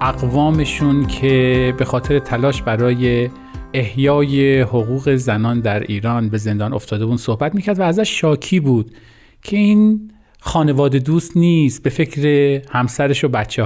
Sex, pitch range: male, 125-170 Hz